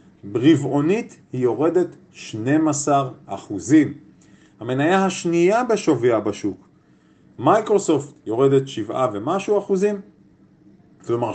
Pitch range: 125-175 Hz